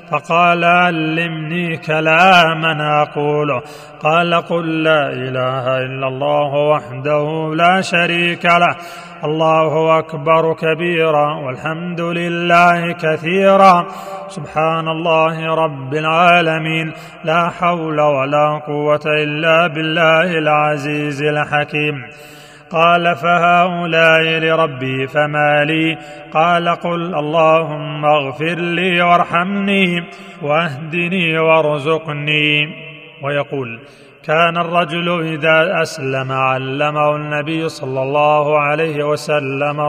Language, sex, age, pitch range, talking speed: Arabic, male, 30-49, 150-170 Hz, 85 wpm